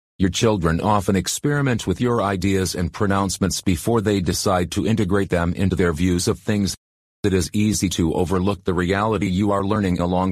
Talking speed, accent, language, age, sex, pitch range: 180 wpm, American, English, 40-59, male, 90-110 Hz